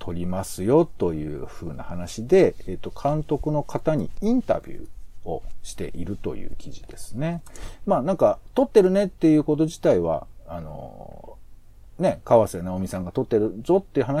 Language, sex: Japanese, male